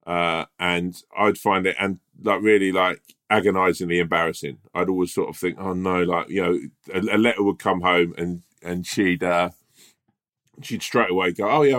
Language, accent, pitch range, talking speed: English, British, 90-120 Hz, 190 wpm